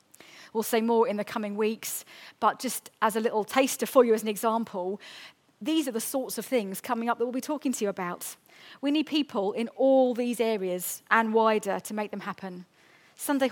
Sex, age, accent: female, 40-59, British